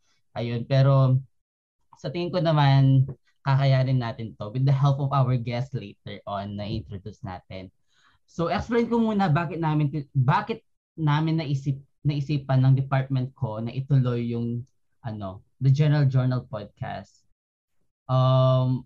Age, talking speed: 20-39, 135 wpm